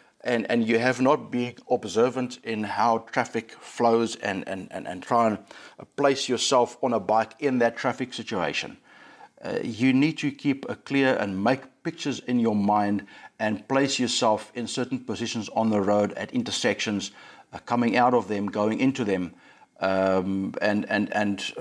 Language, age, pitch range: English, 60-79, 105-125 Hz